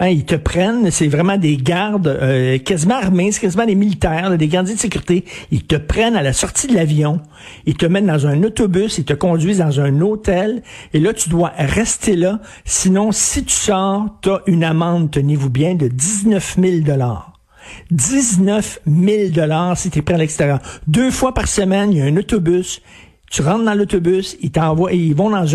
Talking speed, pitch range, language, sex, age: 200 wpm, 155-200 Hz, French, male, 60-79